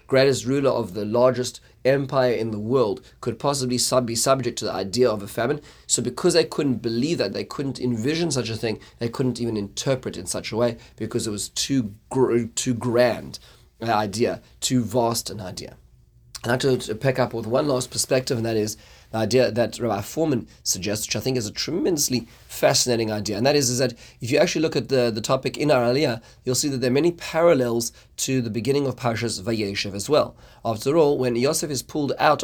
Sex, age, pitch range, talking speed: male, 30-49, 115-135 Hz, 215 wpm